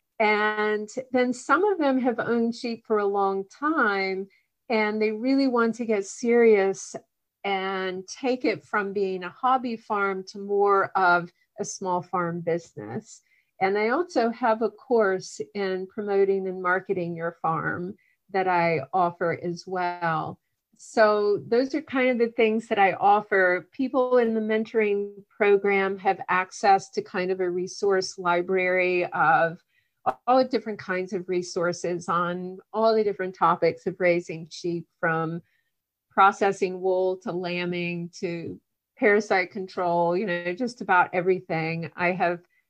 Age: 40-59